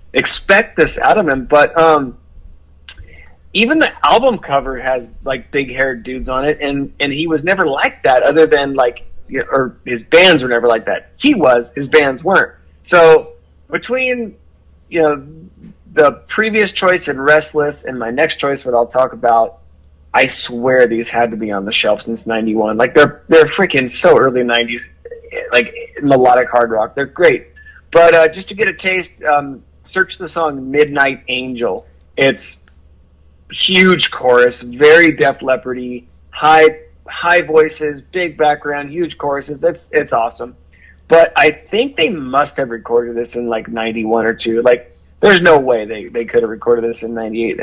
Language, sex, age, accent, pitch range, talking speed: English, male, 30-49, American, 115-155 Hz, 170 wpm